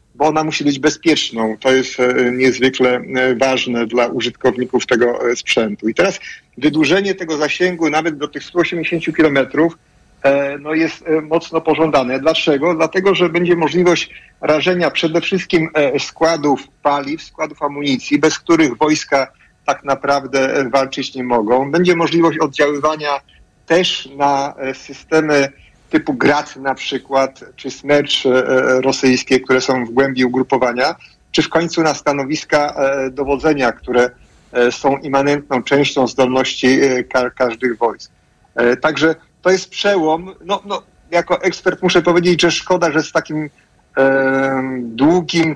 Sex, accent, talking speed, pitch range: male, native, 130 wpm, 135-160 Hz